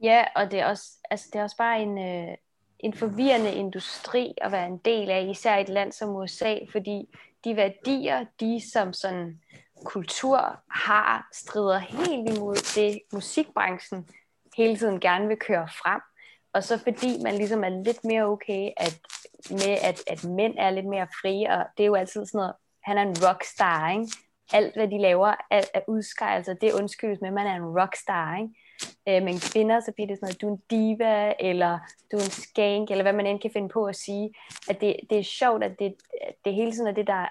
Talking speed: 205 wpm